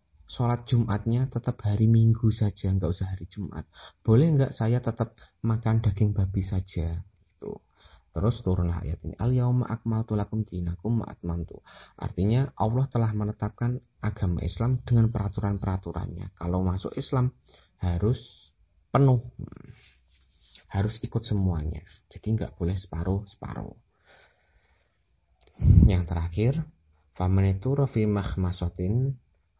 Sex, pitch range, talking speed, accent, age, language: male, 85-110 Hz, 95 wpm, native, 30-49, Indonesian